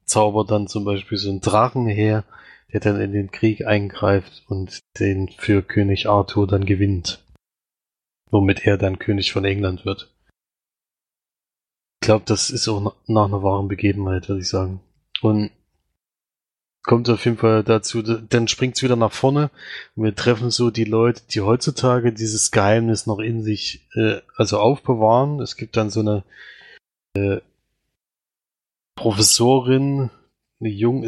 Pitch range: 100-115 Hz